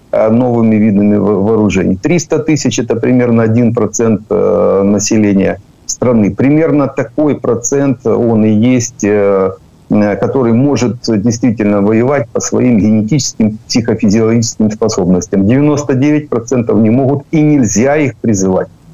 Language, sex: Ukrainian, male